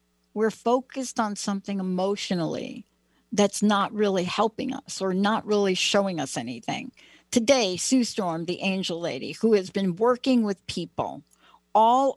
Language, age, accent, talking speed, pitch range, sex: English, 60-79, American, 145 wpm, 180-245 Hz, female